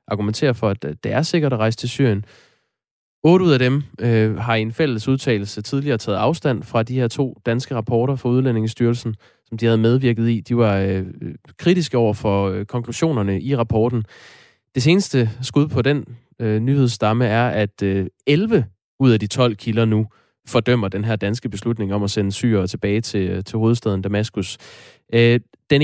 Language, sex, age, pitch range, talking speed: Danish, male, 20-39, 105-130 Hz, 180 wpm